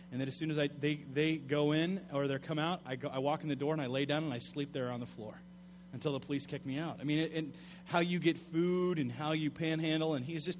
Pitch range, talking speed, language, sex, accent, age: 145-185 Hz, 300 wpm, English, male, American, 30-49